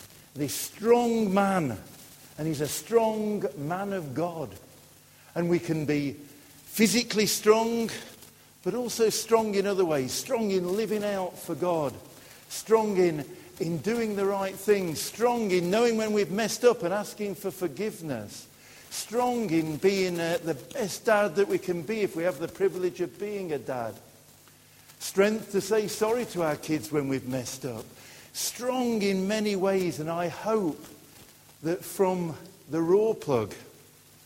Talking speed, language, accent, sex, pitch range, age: 155 wpm, English, British, male, 150-200 Hz, 50-69